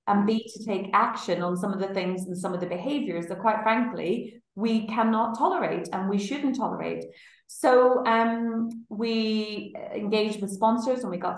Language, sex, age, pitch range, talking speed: English, female, 30-49, 180-225 Hz, 175 wpm